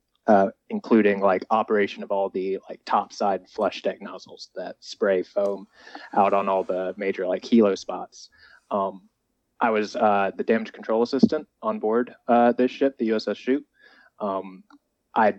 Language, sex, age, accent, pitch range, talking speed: English, male, 20-39, American, 105-120 Hz, 160 wpm